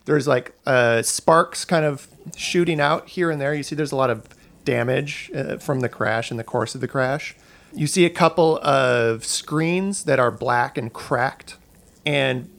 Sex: male